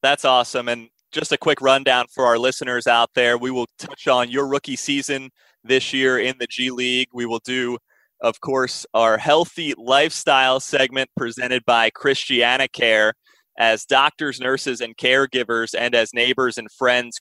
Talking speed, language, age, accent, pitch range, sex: 165 wpm, English, 30-49, American, 115-135 Hz, male